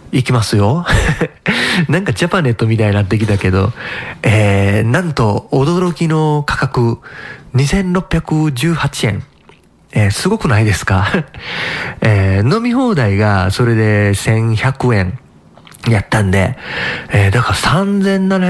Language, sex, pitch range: Japanese, male, 100-140 Hz